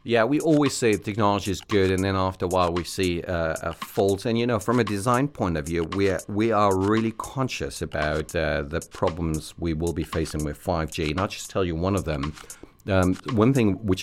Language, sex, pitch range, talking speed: English, male, 85-110 Hz, 230 wpm